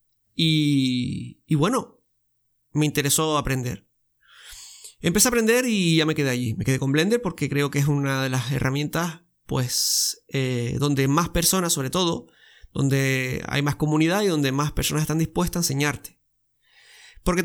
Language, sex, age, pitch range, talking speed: Spanish, male, 30-49, 135-175 Hz, 155 wpm